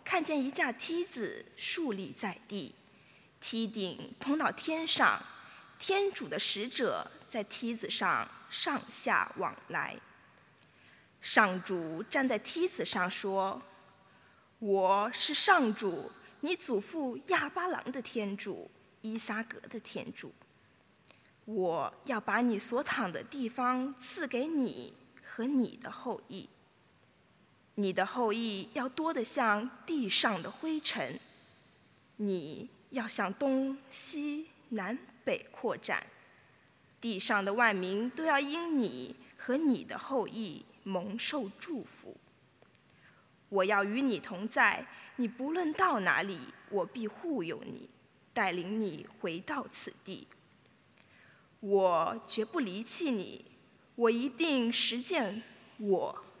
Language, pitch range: English, 205-280 Hz